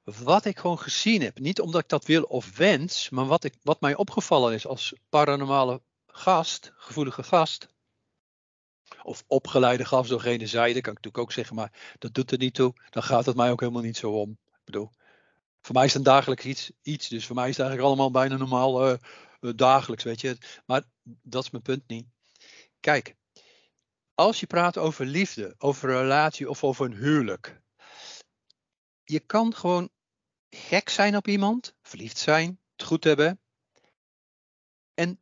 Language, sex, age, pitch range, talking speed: Dutch, male, 50-69, 125-170 Hz, 180 wpm